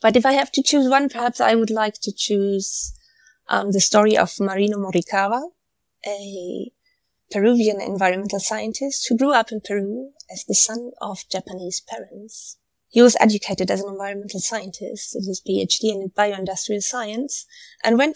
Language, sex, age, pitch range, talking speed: English, female, 20-39, 190-235 Hz, 160 wpm